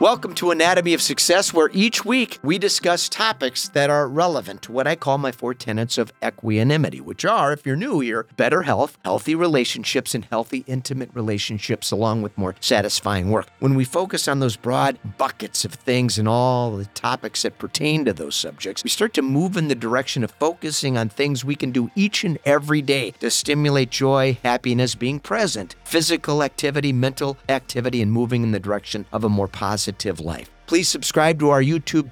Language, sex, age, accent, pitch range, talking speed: English, male, 40-59, American, 115-160 Hz, 190 wpm